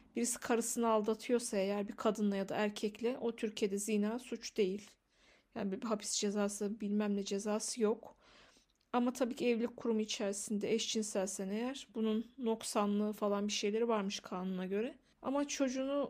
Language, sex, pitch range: Turkish, female, 205-240 Hz